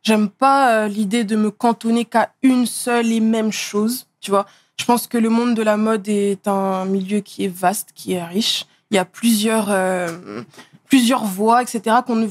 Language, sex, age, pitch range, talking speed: French, female, 20-39, 200-230 Hz, 200 wpm